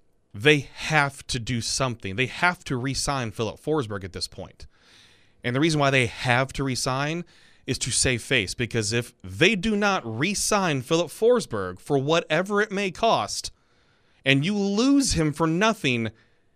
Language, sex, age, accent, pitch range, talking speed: English, male, 30-49, American, 115-170 Hz, 165 wpm